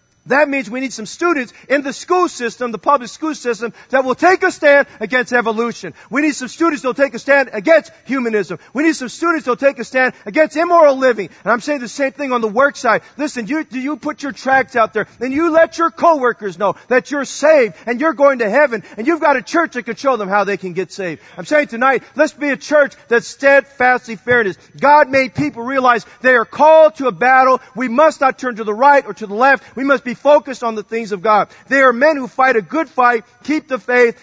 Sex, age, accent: male, 40-59, American